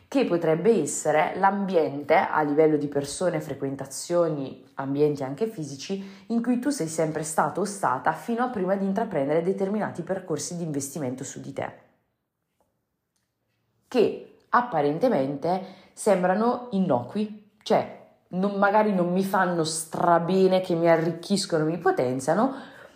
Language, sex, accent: Italian, female, native